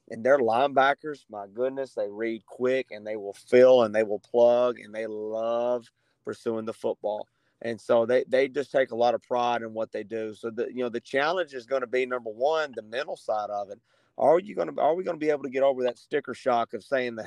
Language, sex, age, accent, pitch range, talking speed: English, male, 30-49, American, 120-135 Hz, 240 wpm